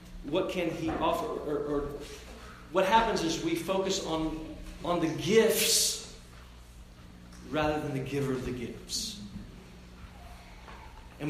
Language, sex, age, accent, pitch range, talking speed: English, male, 40-59, American, 125-190 Hz, 120 wpm